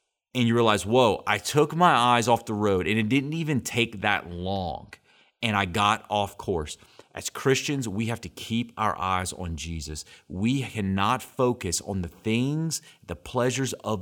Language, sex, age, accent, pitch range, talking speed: English, male, 30-49, American, 95-125 Hz, 180 wpm